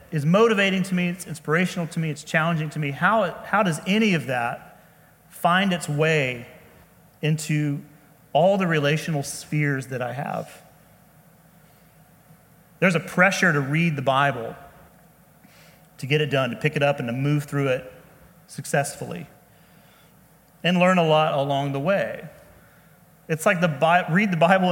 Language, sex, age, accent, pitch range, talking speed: English, male, 30-49, American, 145-180 Hz, 155 wpm